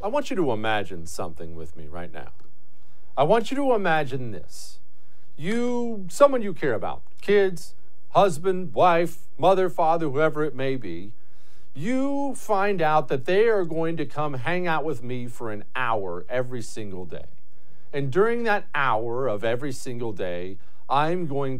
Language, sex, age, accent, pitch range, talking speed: English, male, 50-69, American, 130-200 Hz, 165 wpm